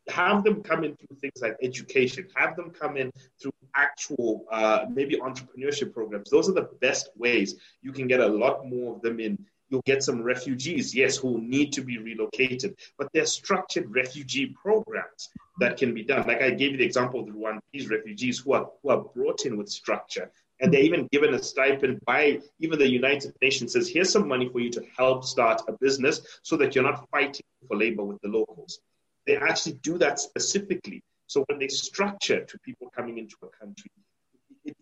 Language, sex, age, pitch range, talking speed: English, male, 30-49, 125-185 Hz, 200 wpm